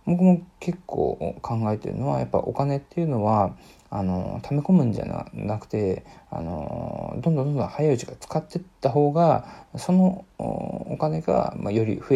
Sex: male